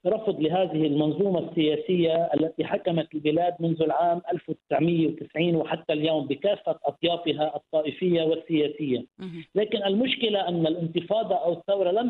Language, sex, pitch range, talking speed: English, male, 165-205 Hz, 115 wpm